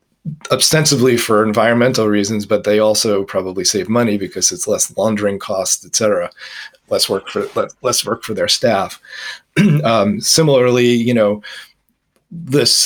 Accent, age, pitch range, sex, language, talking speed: American, 40-59, 105-130 Hz, male, English, 140 wpm